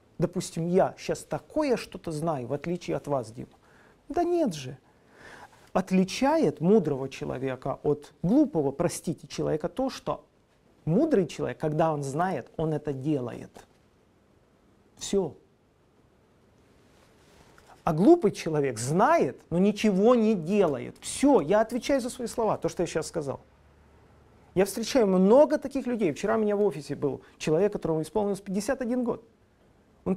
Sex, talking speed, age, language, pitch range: male, 135 wpm, 40-59, Russian, 155-225 Hz